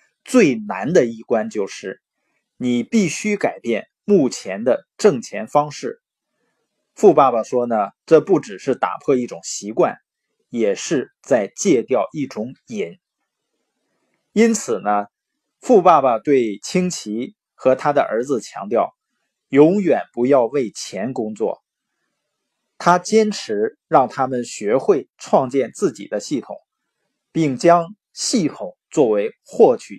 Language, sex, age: Chinese, male, 20-39